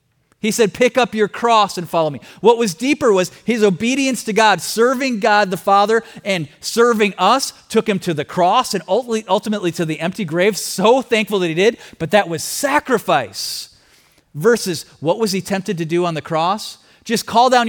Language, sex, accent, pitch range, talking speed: English, male, American, 145-210 Hz, 195 wpm